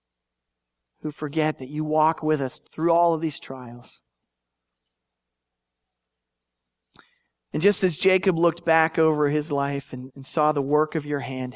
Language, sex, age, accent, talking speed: English, male, 40-59, American, 150 wpm